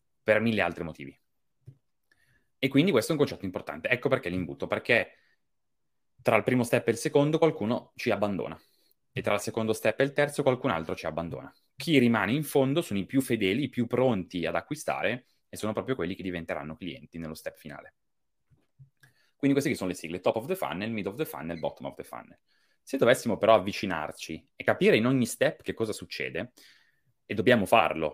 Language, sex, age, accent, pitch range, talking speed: Italian, male, 30-49, native, 90-130 Hz, 195 wpm